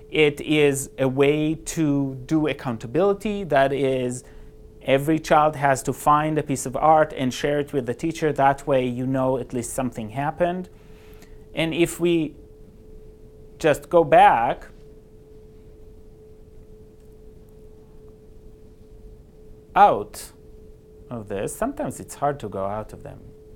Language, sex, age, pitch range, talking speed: English, male, 30-49, 120-155 Hz, 125 wpm